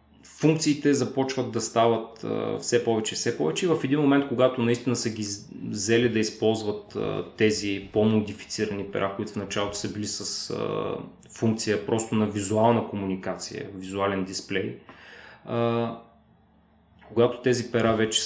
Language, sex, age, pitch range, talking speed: Bulgarian, male, 20-39, 105-120 Hz, 130 wpm